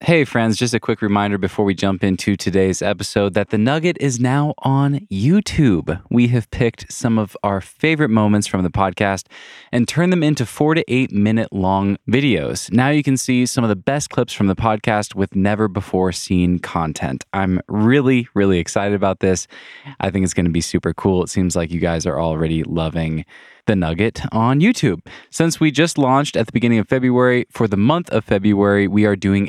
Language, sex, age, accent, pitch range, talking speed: English, male, 20-39, American, 95-120 Hz, 205 wpm